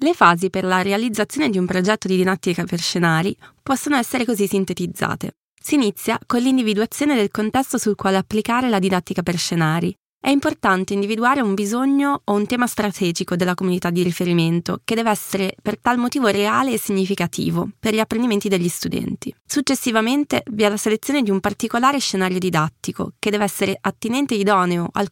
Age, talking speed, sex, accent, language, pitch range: 20-39, 175 wpm, female, native, Italian, 190-235 Hz